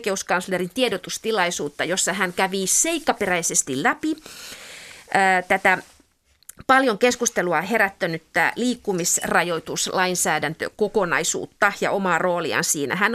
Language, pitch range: Finnish, 180-225 Hz